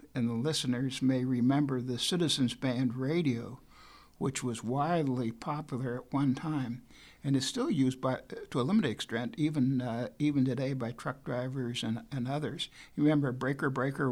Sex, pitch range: male, 125-150 Hz